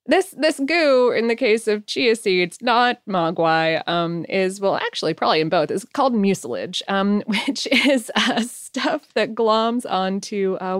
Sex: female